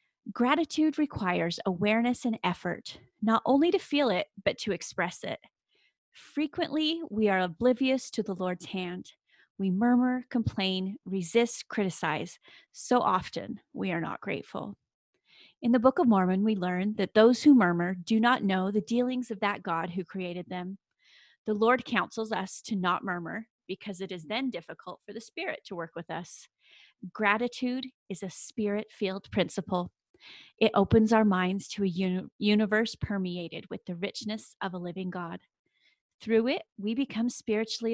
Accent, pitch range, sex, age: American, 185-235 Hz, female, 30-49